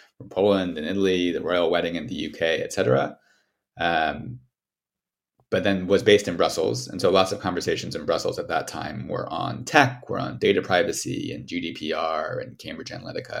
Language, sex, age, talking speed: English, male, 30-49, 175 wpm